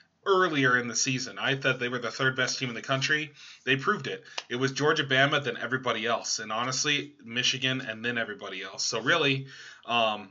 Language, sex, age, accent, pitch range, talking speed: English, male, 20-39, American, 120-140 Hz, 200 wpm